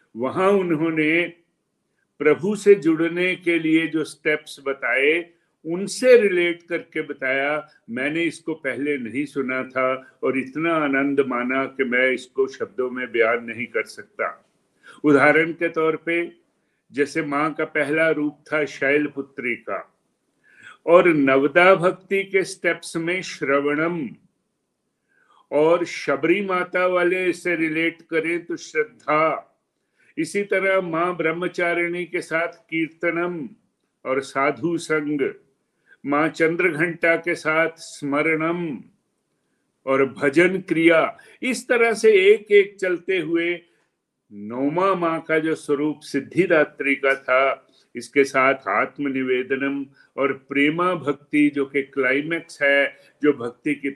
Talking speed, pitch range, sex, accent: 120 wpm, 140-175 Hz, male, native